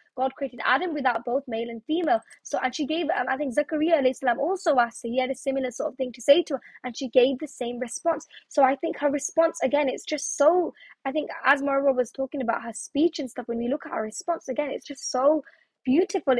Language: English